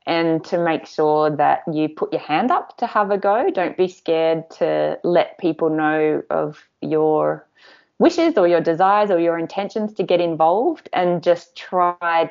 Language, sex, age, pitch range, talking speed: English, female, 20-39, 155-180 Hz, 175 wpm